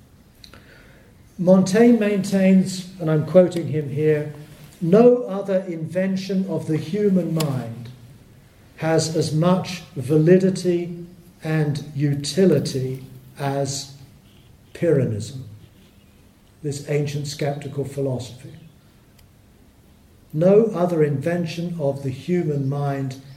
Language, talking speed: English, 85 wpm